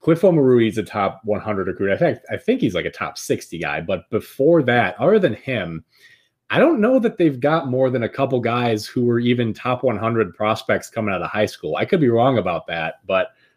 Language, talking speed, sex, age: English, 230 wpm, male, 20-39